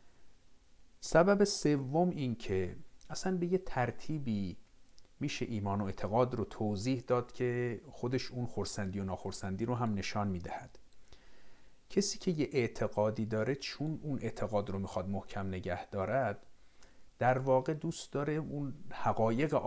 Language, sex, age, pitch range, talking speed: Persian, male, 50-69, 100-130 Hz, 135 wpm